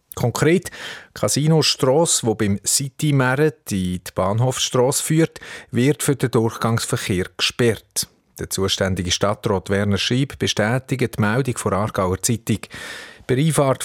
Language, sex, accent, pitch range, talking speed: German, male, Swiss, 105-135 Hz, 115 wpm